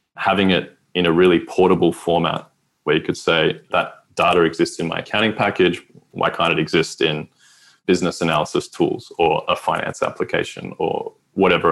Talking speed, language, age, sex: 165 wpm, English, 20-39, male